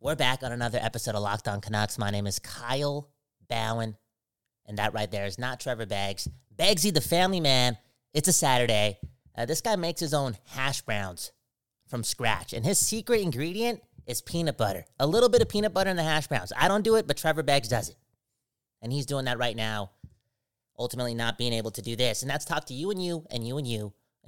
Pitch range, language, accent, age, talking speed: 110-145 Hz, English, American, 30-49, 225 wpm